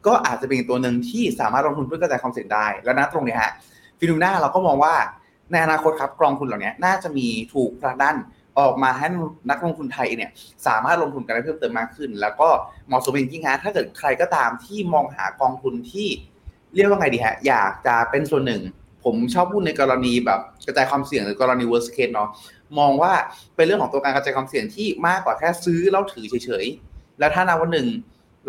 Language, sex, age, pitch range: Thai, male, 20-39, 130-175 Hz